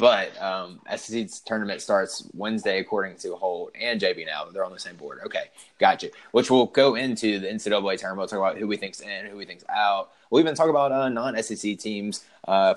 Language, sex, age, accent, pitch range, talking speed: English, male, 20-39, American, 95-115 Hz, 215 wpm